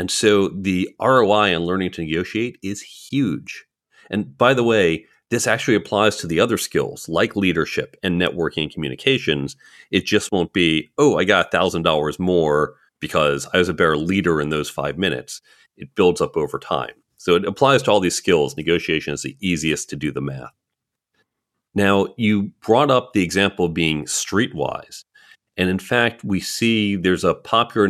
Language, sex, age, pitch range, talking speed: English, male, 40-59, 85-105 Hz, 180 wpm